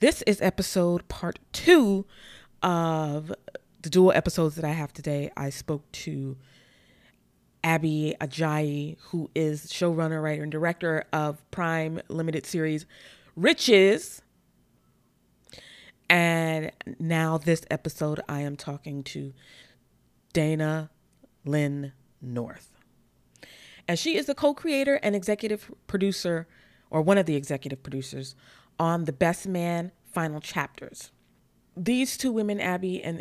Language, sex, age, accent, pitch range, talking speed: English, female, 20-39, American, 150-180 Hz, 120 wpm